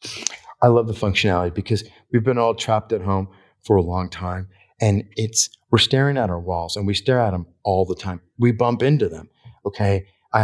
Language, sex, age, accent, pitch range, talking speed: English, male, 40-59, American, 95-115 Hz, 205 wpm